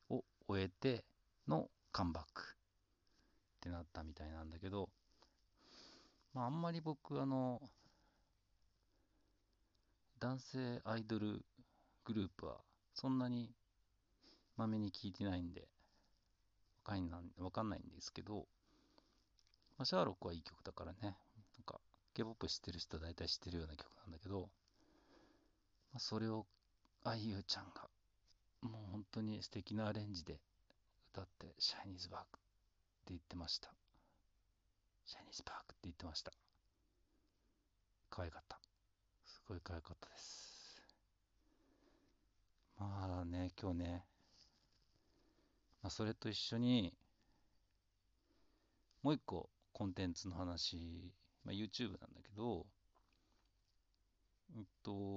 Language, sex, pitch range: Japanese, male, 90-110 Hz